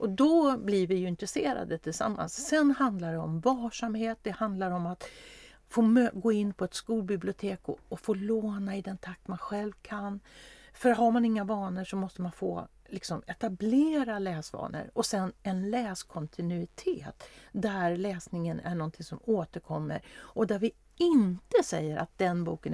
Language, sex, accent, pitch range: Swedish, female, native, 175-230 Hz